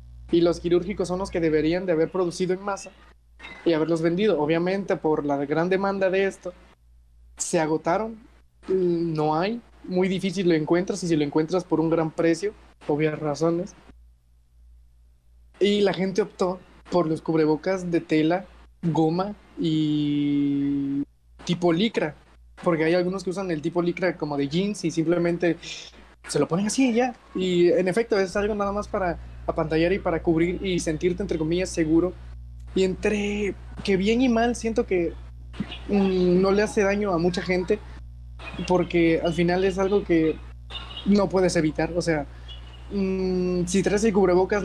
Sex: male